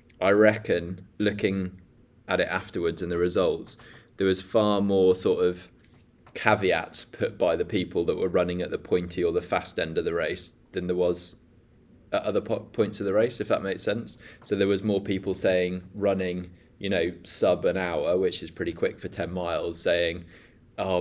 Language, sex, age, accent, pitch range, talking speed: English, male, 20-39, British, 90-105 Hz, 190 wpm